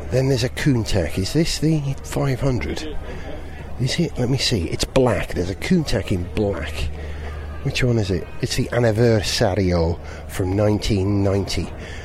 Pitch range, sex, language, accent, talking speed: 90-145 Hz, male, English, British, 145 wpm